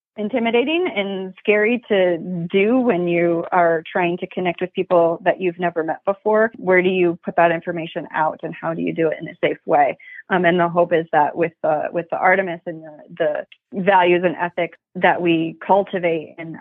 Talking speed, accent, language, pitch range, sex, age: 200 wpm, American, English, 170-195 Hz, female, 30-49